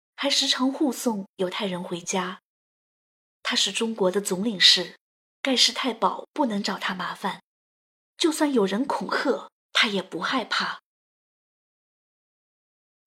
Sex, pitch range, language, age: female, 195-250 Hz, Chinese, 20-39